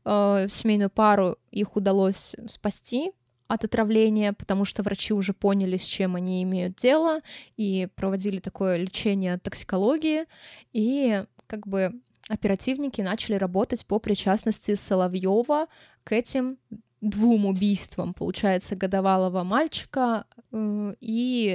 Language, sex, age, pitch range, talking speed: Russian, female, 20-39, 190-225 Hz, 110 wpm